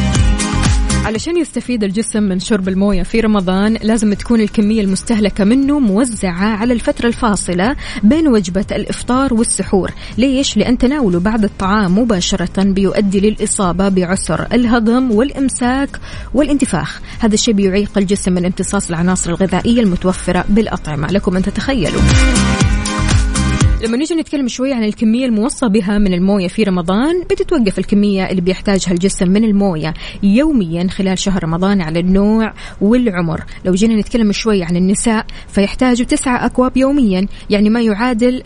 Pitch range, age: 190-235 Hz, 20-39